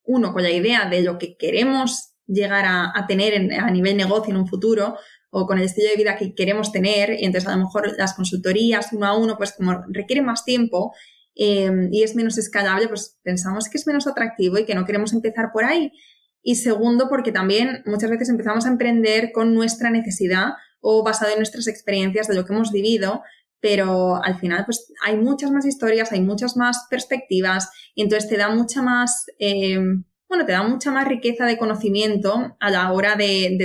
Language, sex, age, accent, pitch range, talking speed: Spanish, female, 20-39, Spanish, 195-230 Hz, 205 wpm